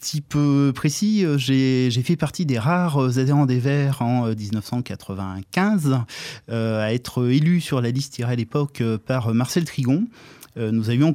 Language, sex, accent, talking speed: French, male, French, 155 wpm